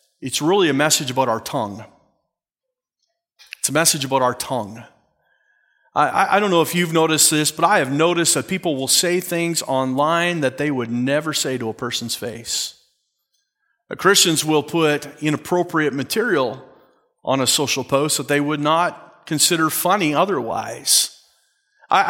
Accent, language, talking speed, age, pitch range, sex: American, English, 155 wpm, 30-49, 135-175 Hz, male